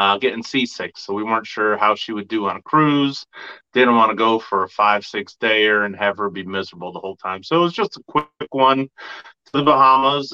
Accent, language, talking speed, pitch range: American, English, 245 wpm, 105-130 Hz